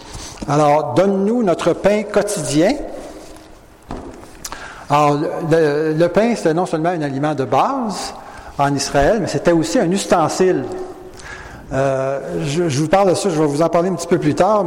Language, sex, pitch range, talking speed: English, male, 140-175 Hz, 170 wpm